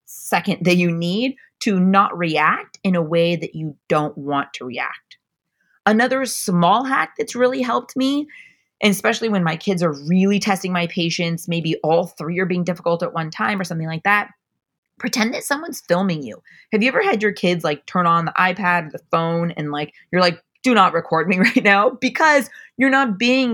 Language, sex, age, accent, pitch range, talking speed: English, female, 20-39, American, 170-235 Hz, 200 wpm